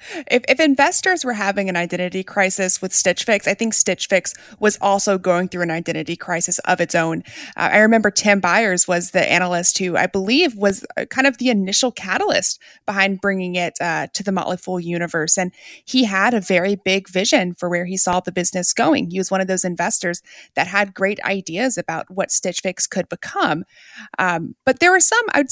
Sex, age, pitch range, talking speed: female, 30-49, 185-250 Hz, 205 wpm